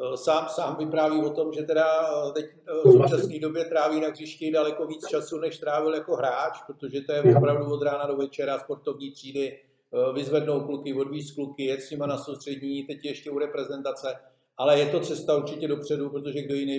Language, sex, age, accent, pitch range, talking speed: Czech, male, 50-69, native, 140-160 Hz, 190 wpm